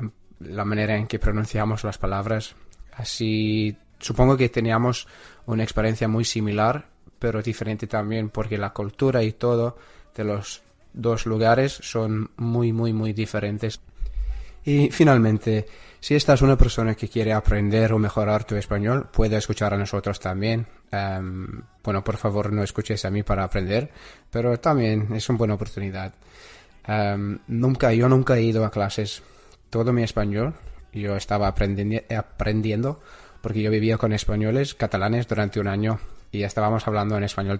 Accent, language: Spanish, English